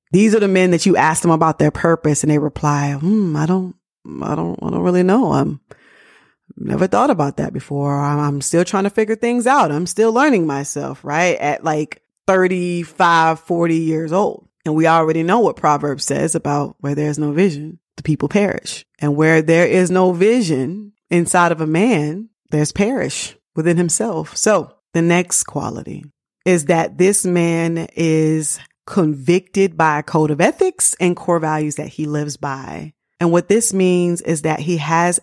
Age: 30-49